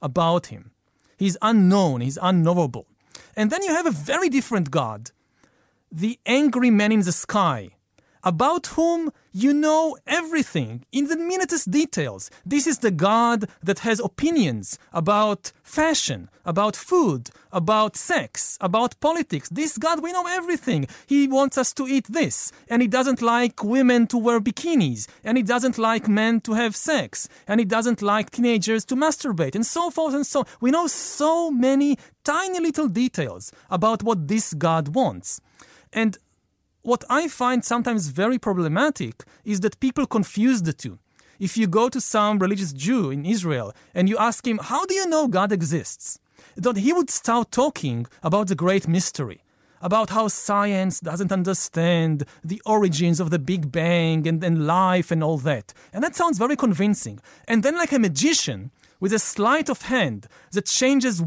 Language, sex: English, male